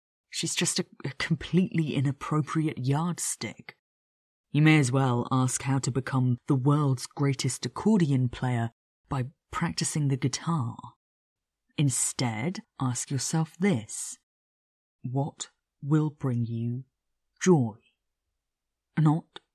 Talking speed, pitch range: 105 wpm, 120-155 Hz